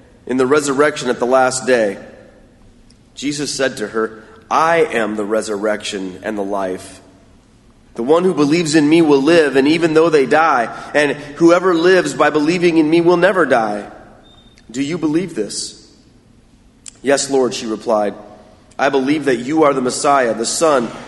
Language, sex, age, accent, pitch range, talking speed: English, male, 30-49, American, 120-155 Hz, 165 wpm